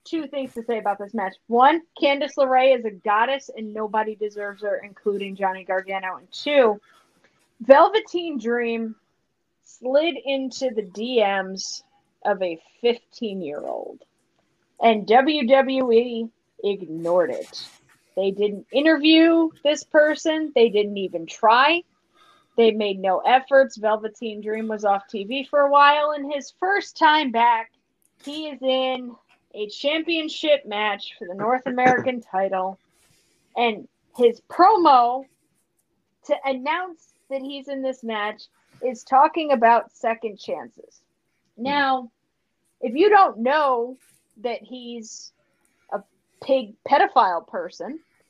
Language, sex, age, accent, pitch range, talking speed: English, female, 30-49, American, 220-295 Hz, 120 wpm